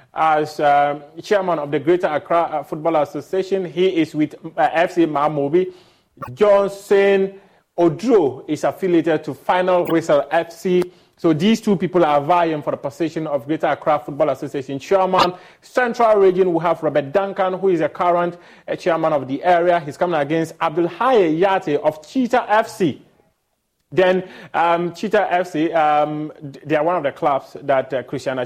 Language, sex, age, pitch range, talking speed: English, male, 30-49, 150-185 Hz, 160 wpm